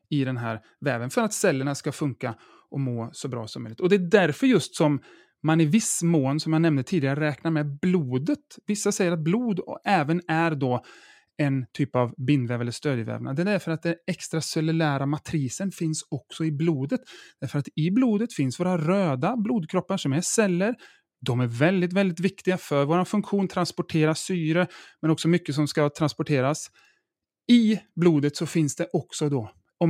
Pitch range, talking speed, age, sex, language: 140-180 Hz, 185 wpm, 30-49, male, Swedish